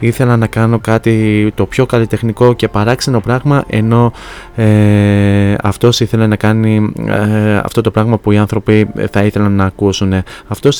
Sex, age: male, 20-39